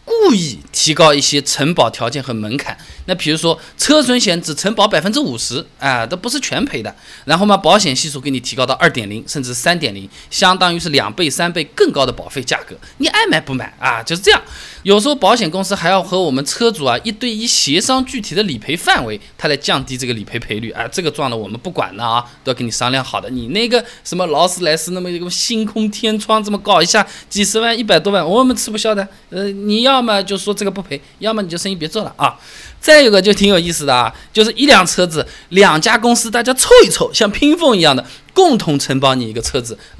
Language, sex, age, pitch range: Chinese, male, 20-39, 135-205 Hz